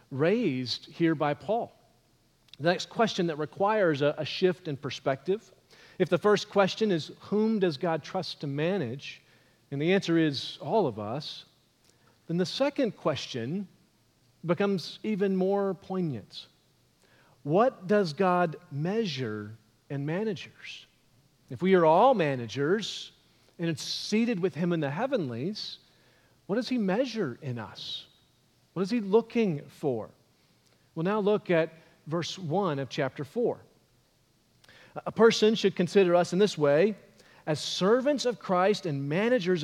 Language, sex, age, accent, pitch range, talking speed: English, male, 40-59, American, 145-200 Hz, 140 wpm